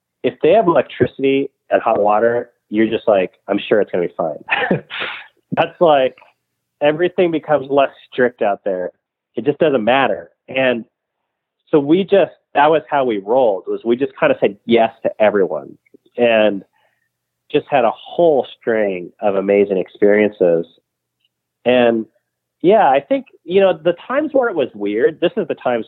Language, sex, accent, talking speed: English, male, American, 165 wpm